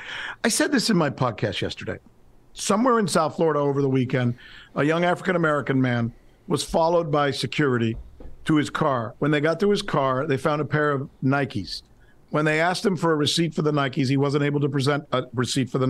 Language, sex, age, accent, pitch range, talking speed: English, male, 50-69, American, 135-170 Hz, 210 wpm